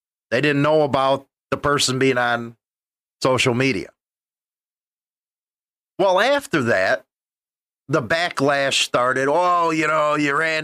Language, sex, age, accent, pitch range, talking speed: English, male, 40-59, American, 130-180 Hz, 120 wpm